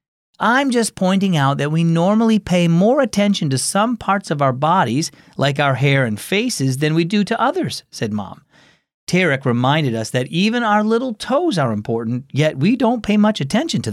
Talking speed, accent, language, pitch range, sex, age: 195 wpm, American, English, 130-185 Hz, male, 40-59